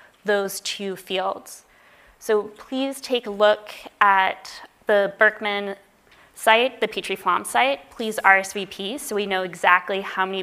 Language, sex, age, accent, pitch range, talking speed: English, female, 20-39, American, 190-225 Hz, 130 wpm